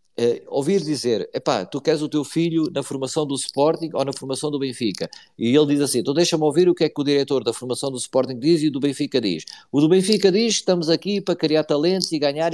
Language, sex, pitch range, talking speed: Portuguese, male, 140-180 Hz, 245 wpm